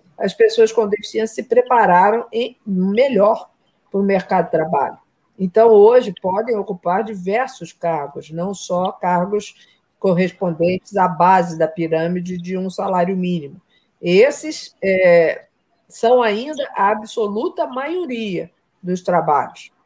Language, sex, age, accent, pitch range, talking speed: Portuguese, female, 50-69, Brazilian, 185-240 Hz, 115 wpm